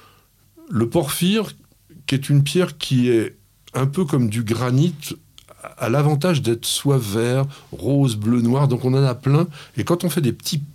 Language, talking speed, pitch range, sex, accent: French, 180 wpm, 100-140 Hz, male, French